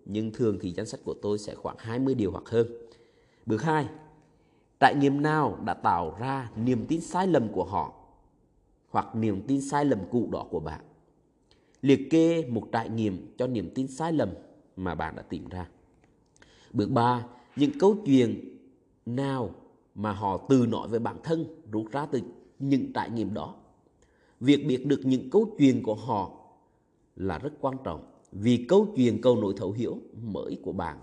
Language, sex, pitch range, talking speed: Vietnamese, male, 105-145 Hz, 180 wpm